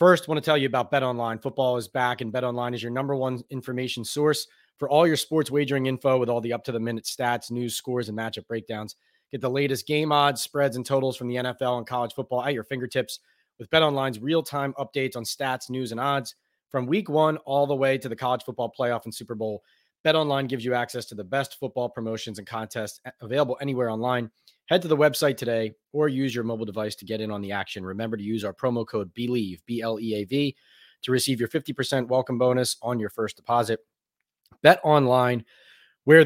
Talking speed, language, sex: 220 wpm, English, male